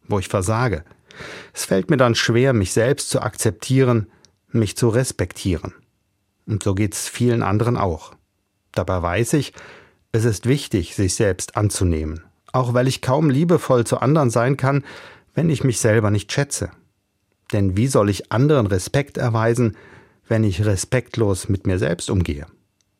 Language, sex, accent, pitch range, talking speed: German, male, German, 100-135 Hz, 155 wpm